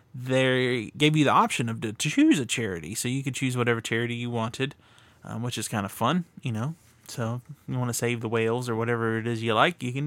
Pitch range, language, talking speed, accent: 115-140 Hz, English, 250 wpm, American